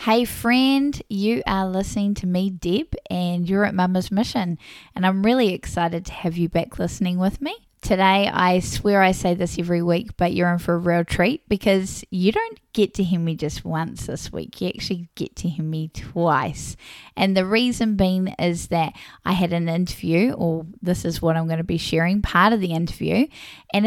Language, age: English, 10-29